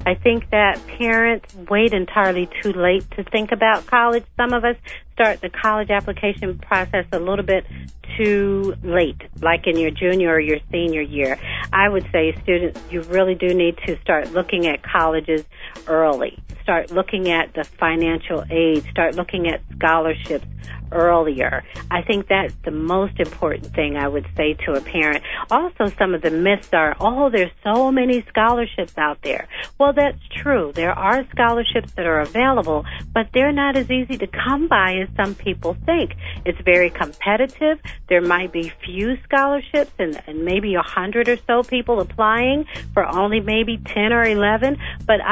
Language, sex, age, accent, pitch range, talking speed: English, female, 50-69, American, 165-225 Hz, 170 wpm